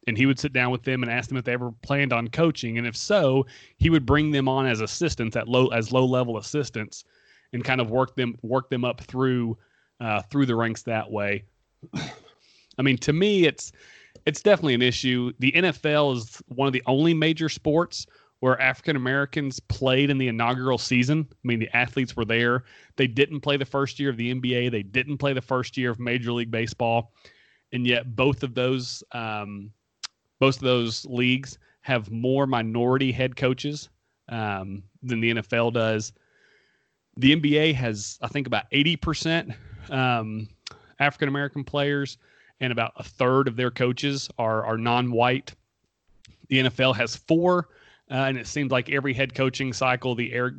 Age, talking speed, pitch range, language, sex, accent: 30-49, 185 wpm, 115-135 Hz, English, male, American